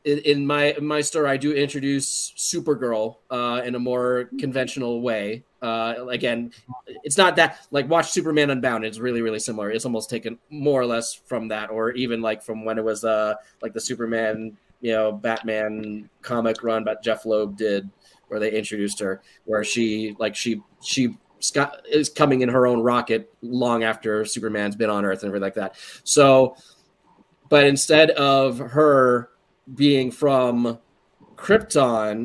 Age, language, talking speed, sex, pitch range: 20-39, English, 165 wpm, male, 115-135 Hz